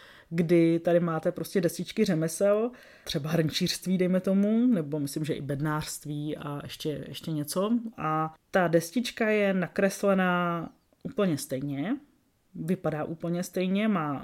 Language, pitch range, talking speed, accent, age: Czech, 155-195 Hz, 125 wpm, native, 20-39